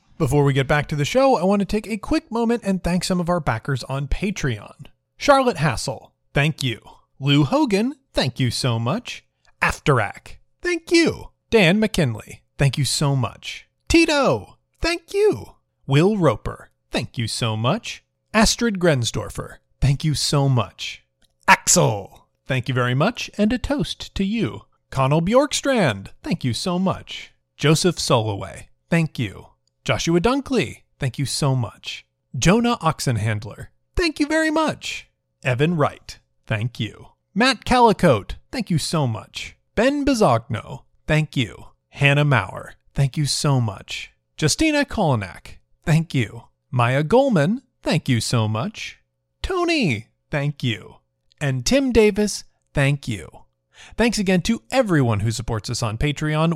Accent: American